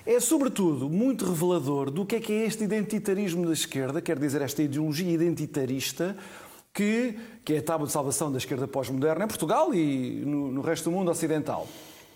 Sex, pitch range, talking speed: male, 155-220 Hz, 185 wpm